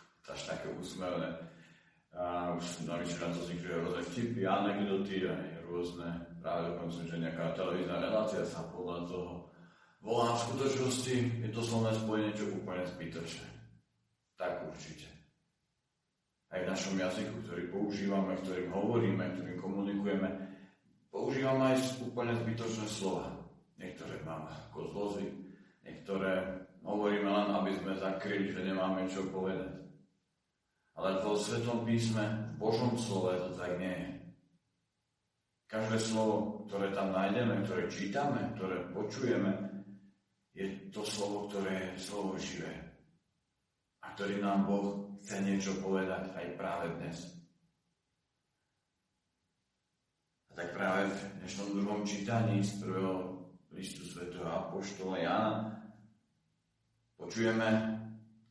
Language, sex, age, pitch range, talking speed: Slovak, male, 40-59, 90-105 Hz, 115 wpm